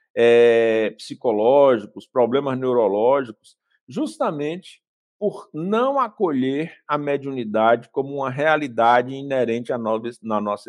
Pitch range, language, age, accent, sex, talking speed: 115-160 Hz, Portuguese, 60-79, Brazilian, male, 100 wpm